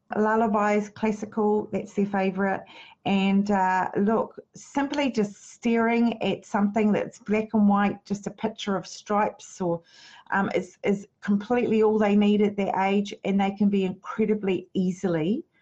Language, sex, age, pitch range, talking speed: English, female, 40-59, 190-235 Hz, 150 wpm